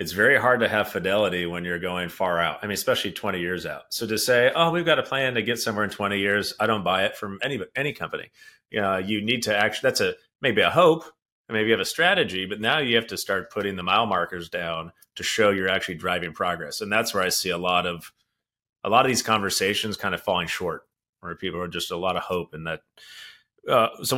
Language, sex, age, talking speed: English, male, 30-49, 255 wpm